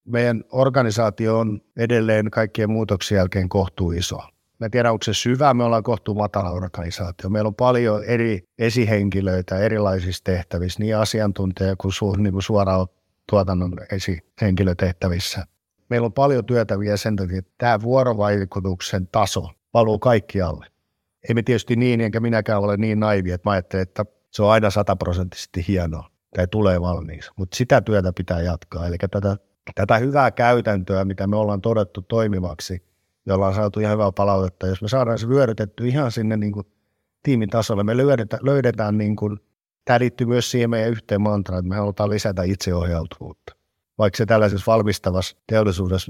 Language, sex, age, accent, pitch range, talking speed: Finnish, male, 50-69, native, 95-115 Hz, 155 wpm